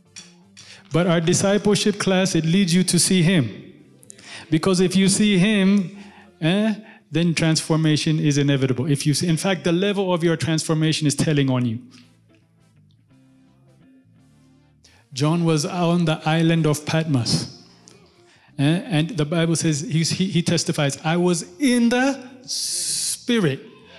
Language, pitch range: English, 145-185 Hz